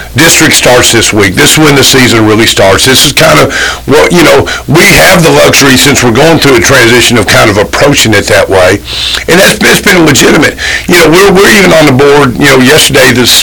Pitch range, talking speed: 120-150 Hz, 230 wpm